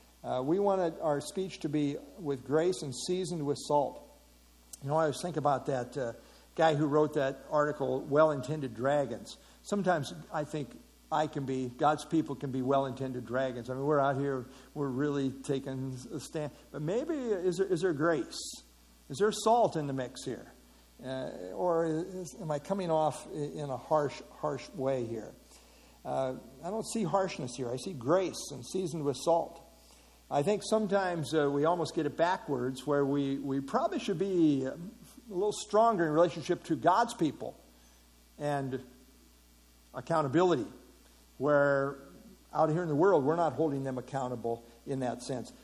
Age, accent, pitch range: 60-79, American, 130-170 Hz